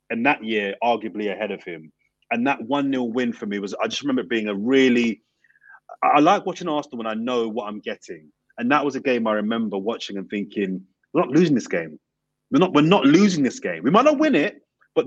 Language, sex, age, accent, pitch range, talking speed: English, male, 30-49, British, 110-145 Hz, 235 wpm